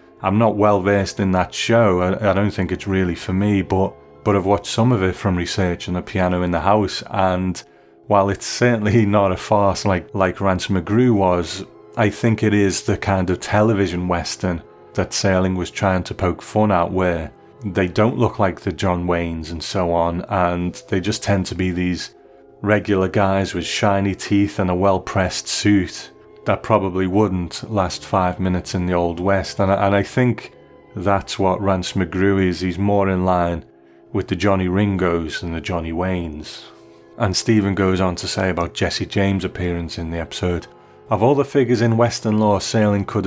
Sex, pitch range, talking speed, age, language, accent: male, 90-105 Hz, 195 wpm, 30-49, English, British